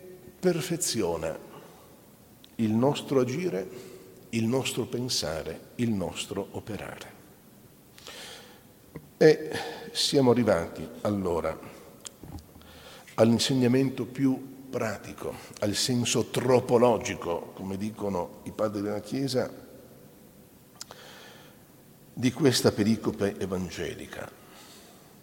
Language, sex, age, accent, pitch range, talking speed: Italian, male, 60-79, native, 115-150 Hz, 70 wpm